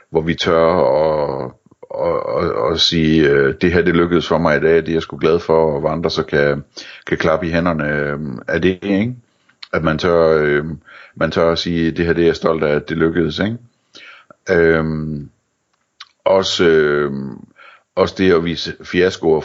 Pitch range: 80-90 Hz